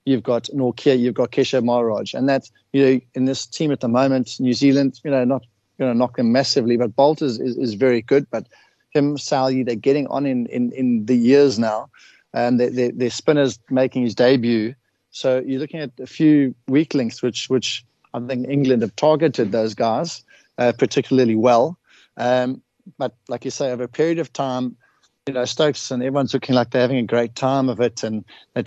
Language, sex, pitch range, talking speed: English, male, 120-135 Hz, 215 wpm